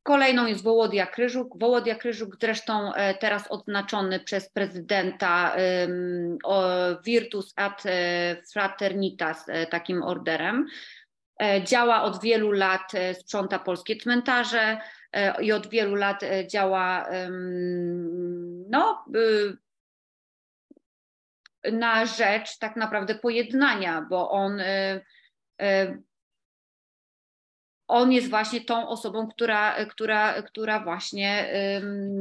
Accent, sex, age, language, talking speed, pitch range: native, female, 30-49, Polish, 80 wpm, 185-220 Hz